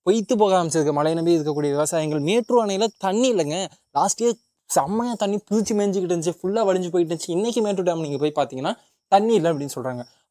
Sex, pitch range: male, 150-200 Hz